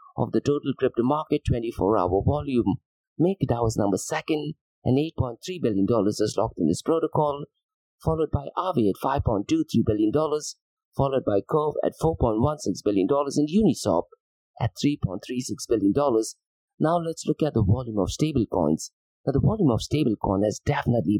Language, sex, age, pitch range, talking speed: English, male, 50-69, 115-155 Hz, 165 wpm